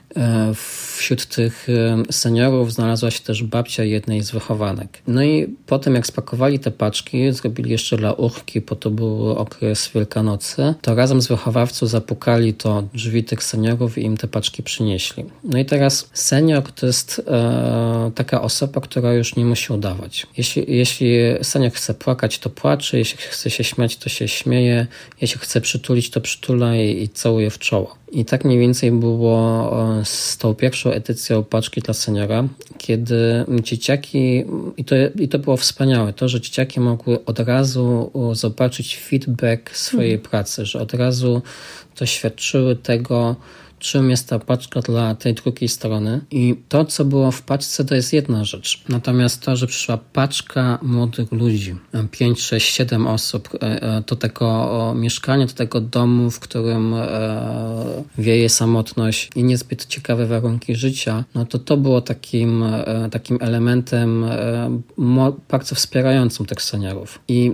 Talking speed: 150 wpm